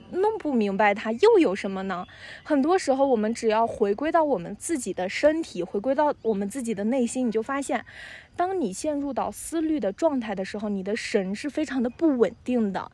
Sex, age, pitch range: female, 20-39, 215-280 Hz